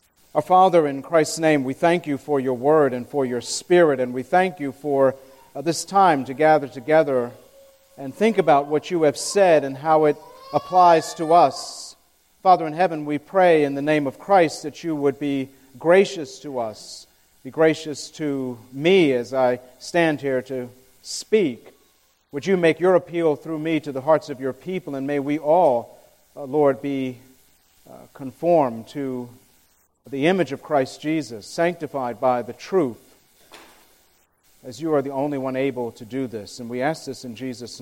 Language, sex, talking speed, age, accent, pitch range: English, male, 180 wpm, 40-59, American, 130-175 Hz